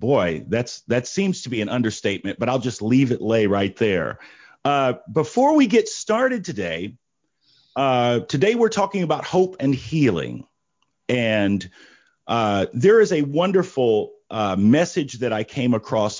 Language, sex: English, male